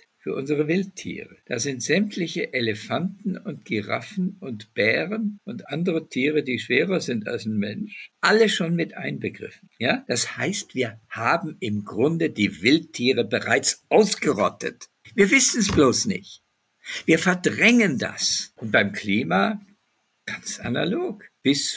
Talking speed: 130 wpm